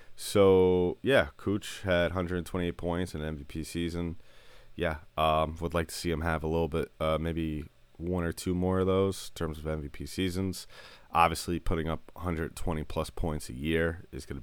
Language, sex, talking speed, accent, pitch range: English, male, 200 wpm, American, 80-90 Hz